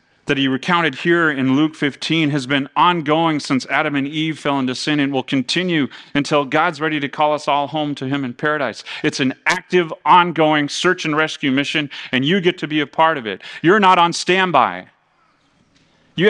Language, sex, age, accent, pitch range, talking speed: English, male, 30-49, American, 135-165 Hz, 200 wpm